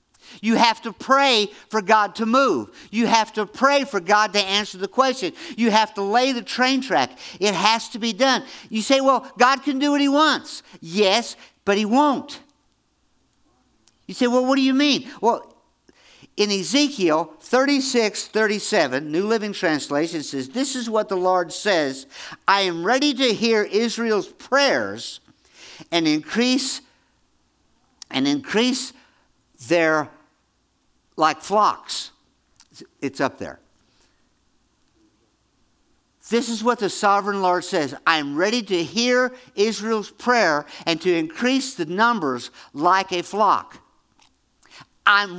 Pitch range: 205-275 Hz